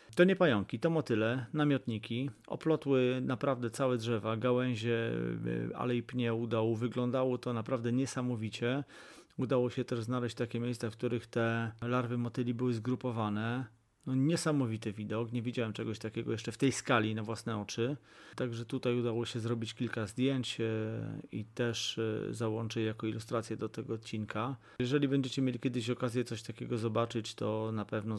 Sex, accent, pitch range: male, native, 110-130 Hz